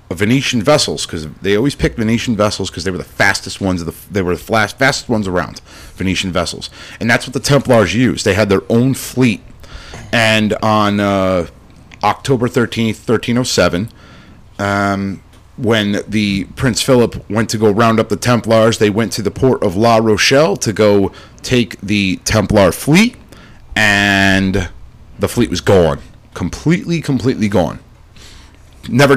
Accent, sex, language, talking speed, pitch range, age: American, male, English, 160 wpm, 95-125 Hz, 30-49